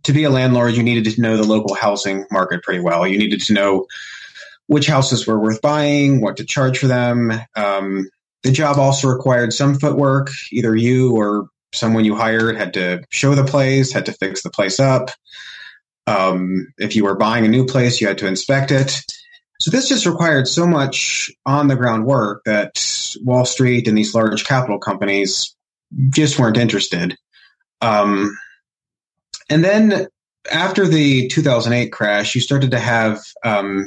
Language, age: English, 30-49